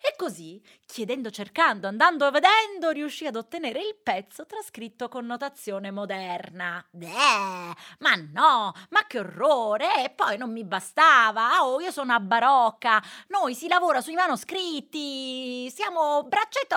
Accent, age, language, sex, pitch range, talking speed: native, 30-49, Italian, female, 215-330 Hz, 135 wpm